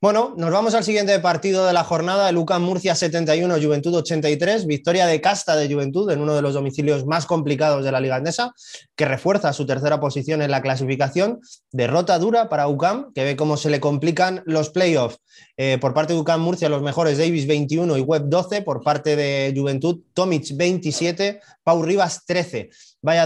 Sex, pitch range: male, 135-175 Hz